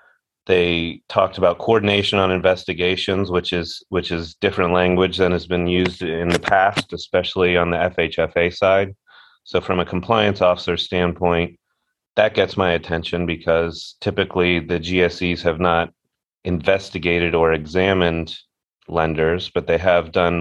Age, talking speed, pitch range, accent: 30-49, 140 wpm, 85-95 Hz, American